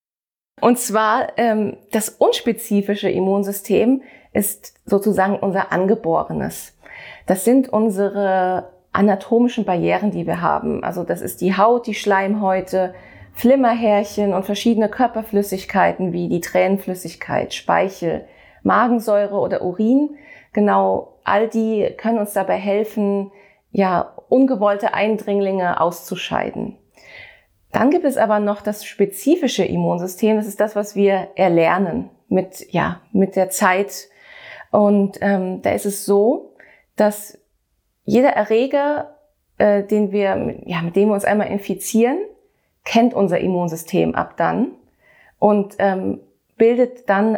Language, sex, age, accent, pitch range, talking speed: German, female, 30-49, German, 190-225 Hz, 120 wpm